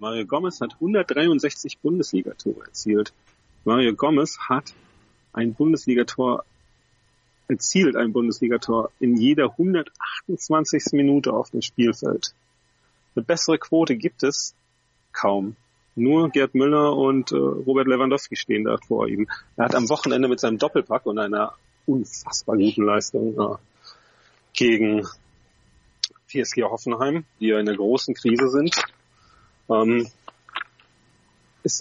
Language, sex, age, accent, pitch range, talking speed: German, male, 40-59, German, 115-140 Hz, 120 wpm